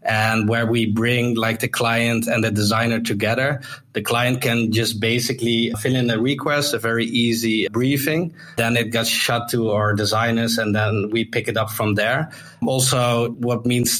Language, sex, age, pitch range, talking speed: English, male, 20-39, 110-120 Hz, 180 wpm